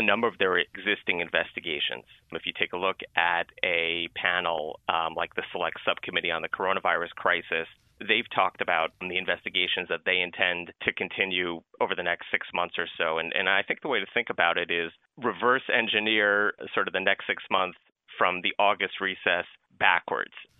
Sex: male